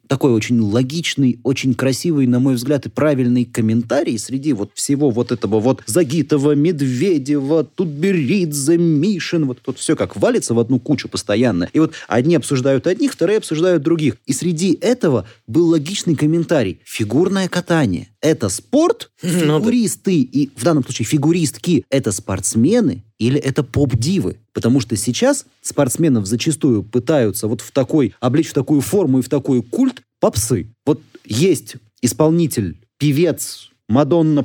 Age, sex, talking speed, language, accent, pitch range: 30-49, male, 145 wpm, Russian, native, 120-175 Hz